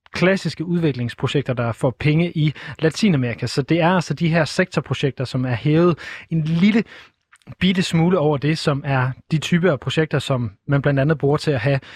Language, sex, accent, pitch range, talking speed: Danish, male, native, 125-160 Hz, 185 wpm